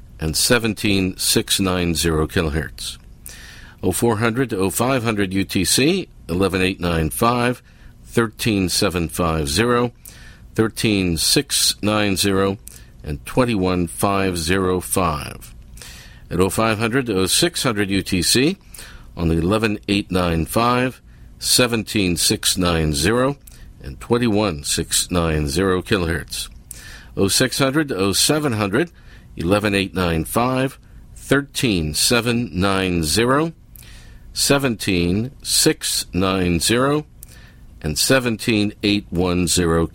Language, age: English, 50-69